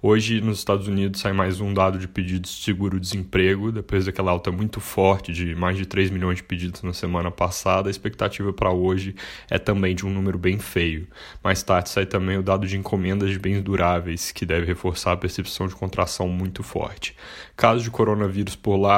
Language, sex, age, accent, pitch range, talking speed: Portuguese, male, 10-29, Brazilian, 95-100 Hz, 200 wpm